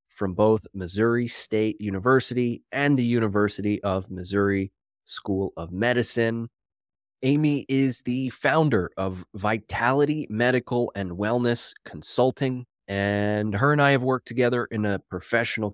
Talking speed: 125 wpm